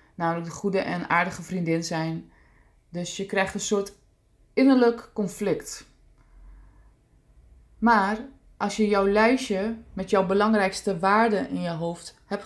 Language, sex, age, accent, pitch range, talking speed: Dutch, female, 20-39, Dutch, 180-220 Hz, 130 wpm